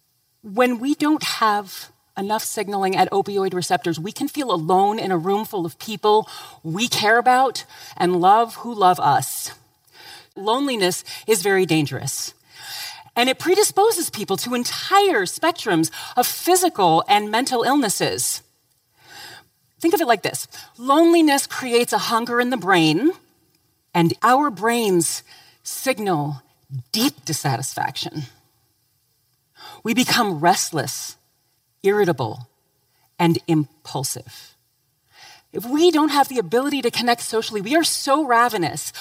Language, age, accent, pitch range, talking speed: English, 40-59, American, 175-285 Hz, 125 wpm